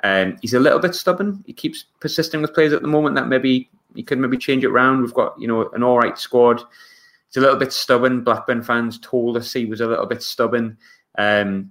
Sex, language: male, English